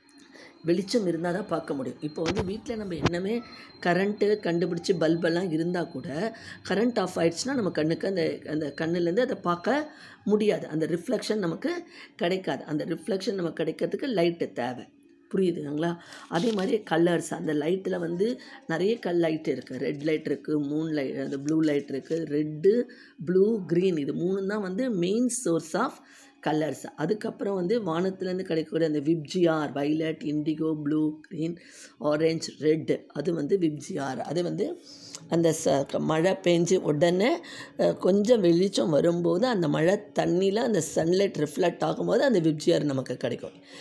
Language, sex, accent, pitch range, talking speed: Tamil, female, native, 160-210 Hz, 140 wpm